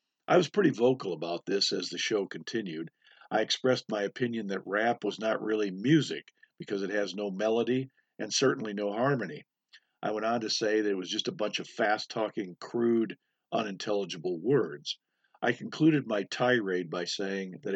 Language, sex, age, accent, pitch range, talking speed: English, male, 50-69, American, 100-130 Hz, 175 wpm